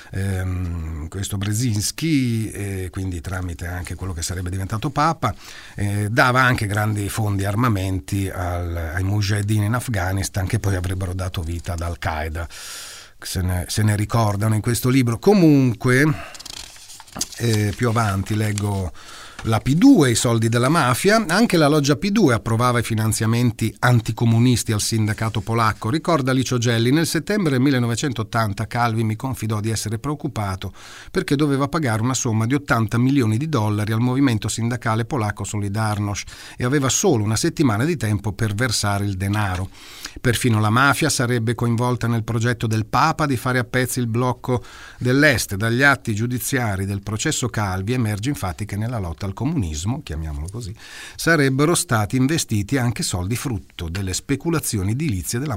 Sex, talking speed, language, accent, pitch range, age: male, 150 wpm, Italian, native, 100-125 Hz, 40-59